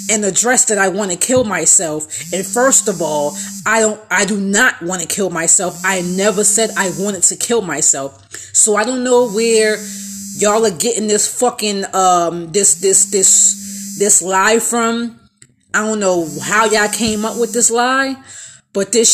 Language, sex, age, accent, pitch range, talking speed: English, female, 20-39, American, 190-240 Hz, 180 wpm